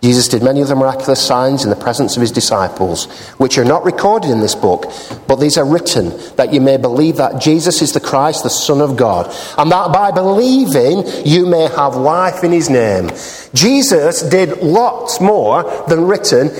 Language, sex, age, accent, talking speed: English, male, 50-69, British, 195 wpm